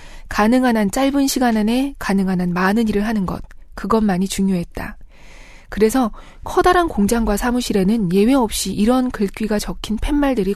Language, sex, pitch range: Korean, female, 190-245 Hz